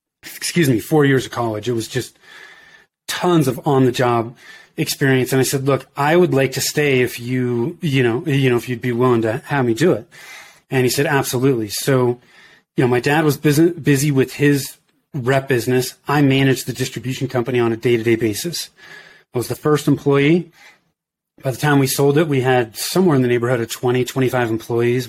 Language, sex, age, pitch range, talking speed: English, male, 30-49, 125-150 Hz, 205 wpm